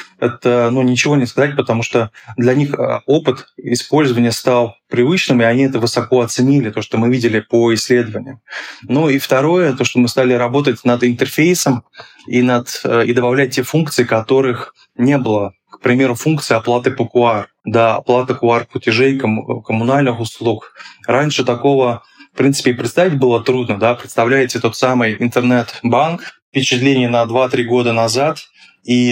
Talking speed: 155 wpm